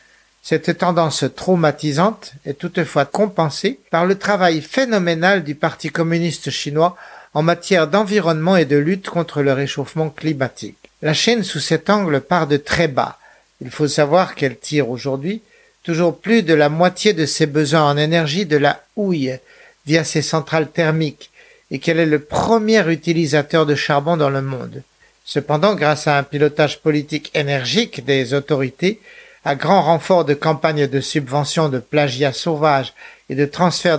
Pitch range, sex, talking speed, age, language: 145-190 Hz, male, 155 wpm, 60-79, French